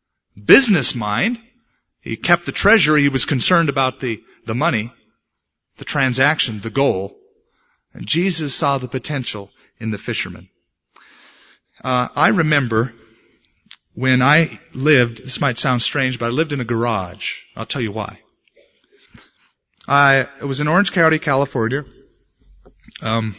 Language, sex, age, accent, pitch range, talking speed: English, male, 30-49, American, 115-145 Hz, 135 wpm